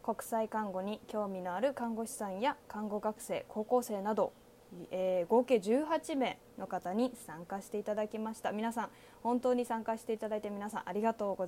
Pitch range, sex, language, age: 200-245 Hz, female, Japanese, 20-39